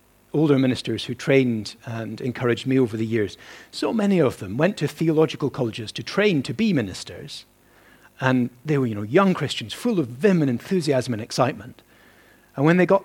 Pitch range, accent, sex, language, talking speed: 120-160 Hz, British, male, English, 190 wpm